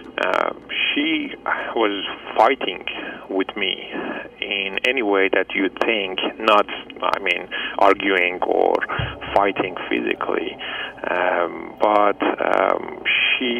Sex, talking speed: male, 100 wpm